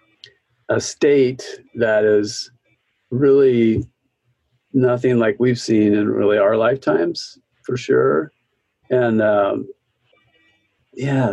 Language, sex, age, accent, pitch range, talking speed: English, male, 50-69, American, 105-130 Hz, 95 wpm